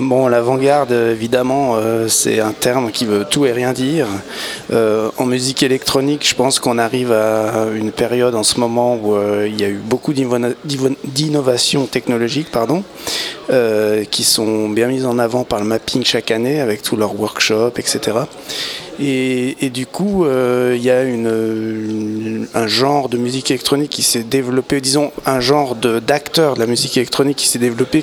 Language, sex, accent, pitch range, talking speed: French, male, French, 115-135 Hz, 180 wpm